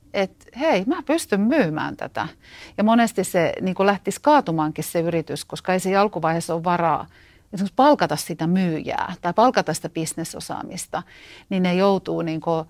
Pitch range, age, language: 160-195 Hz, 40-59, Finnish